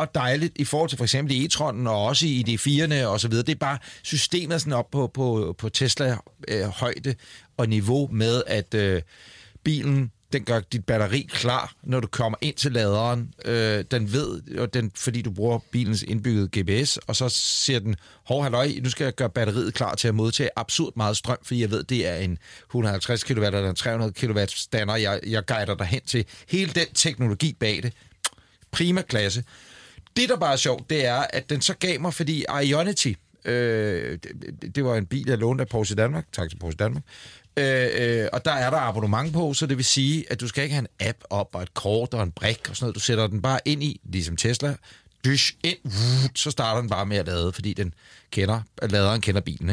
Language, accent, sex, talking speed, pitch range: Danish, native, male, 215 wpm, 105-140 Hz